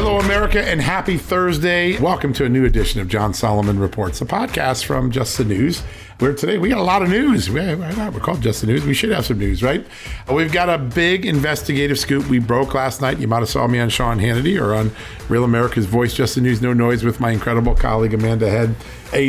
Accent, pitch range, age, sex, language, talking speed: American, 110-140 Hz, 50-69, male, English, 230 wpm